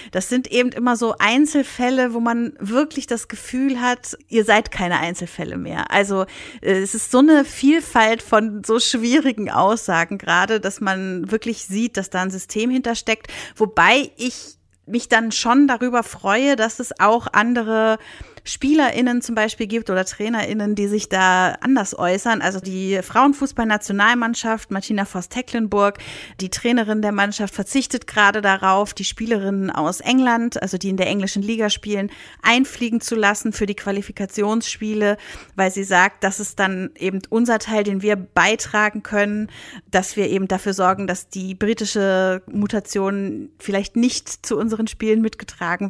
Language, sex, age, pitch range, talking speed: German, female, 30-49, 195-235 Hz, 155 wpm